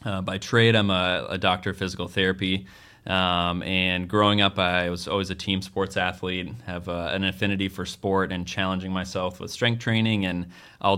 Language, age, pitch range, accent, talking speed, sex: English, 20-39, 90-100 Hz, American, 185 wpm, male